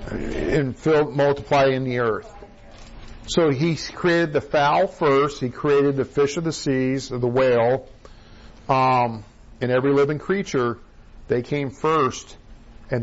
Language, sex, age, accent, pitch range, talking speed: English, male, 50-69, American, 115-145 Hz, 145 wpm